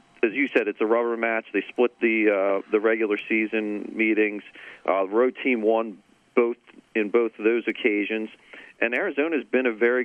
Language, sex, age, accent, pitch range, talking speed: English, male, 40-59, American, 110-130 Hz, 185 wpm